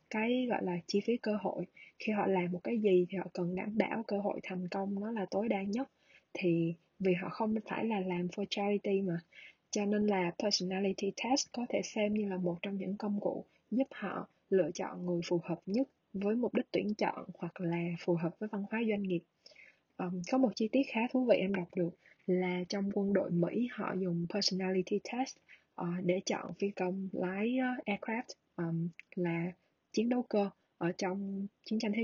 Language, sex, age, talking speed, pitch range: Vietnamese, female, 20-39, 200 wpm, 180-215 Hz